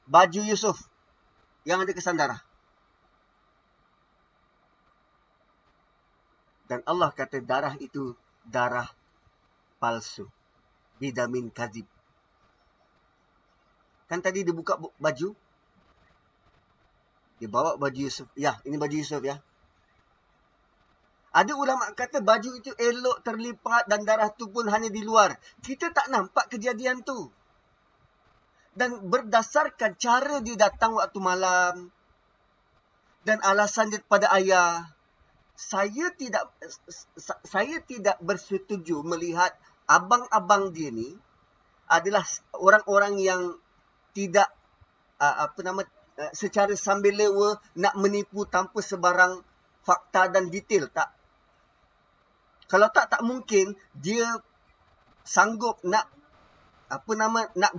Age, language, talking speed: 30-49, Malay, 100 wpm